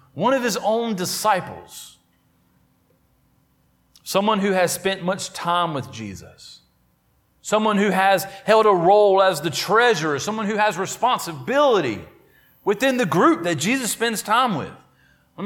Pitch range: 155-225 Hz